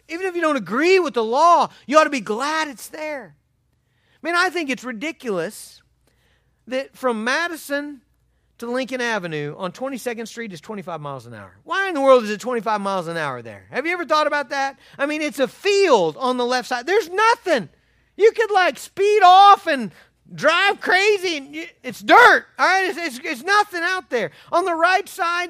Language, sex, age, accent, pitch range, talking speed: English, male, 40-59, American, 200-300 Hz, 200 wpm